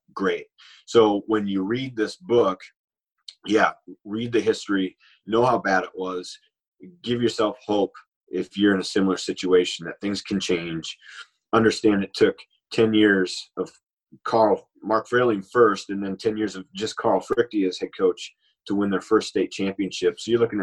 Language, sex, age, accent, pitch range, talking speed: English, male, 30-49, American, 95-115 Hz, 170 wpm